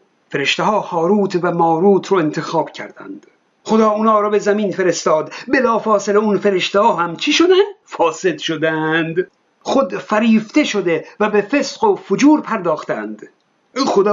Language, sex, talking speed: Persian, male, 145 wpm